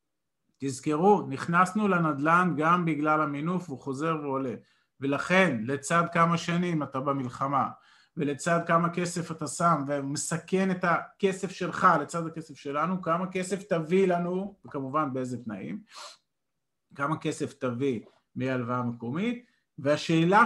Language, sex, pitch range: Hebrew, male, 135-185 Hz